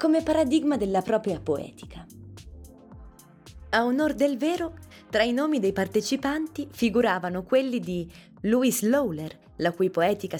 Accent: native